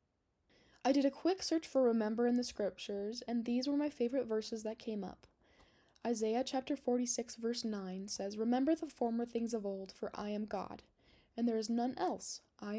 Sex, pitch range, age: female, 210-250 Hz, 10-29